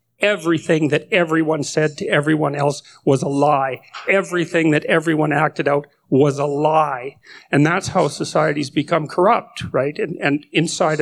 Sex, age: male, 50-69